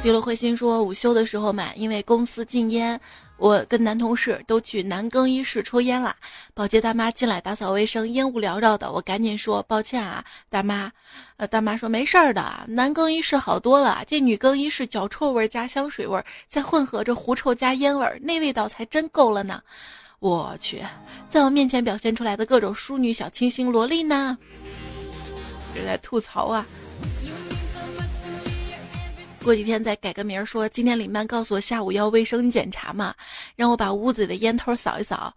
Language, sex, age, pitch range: Chinese, female, 20-39, 210-260 Hz